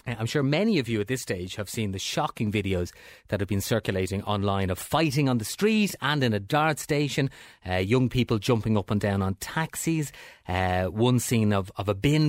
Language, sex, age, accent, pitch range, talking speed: English, male, 30-49, Irish, 100-130 Hz, 220 wpm